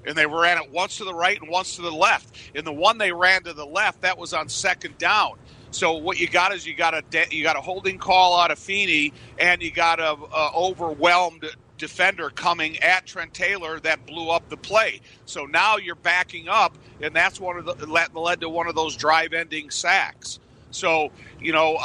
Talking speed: 220 wpm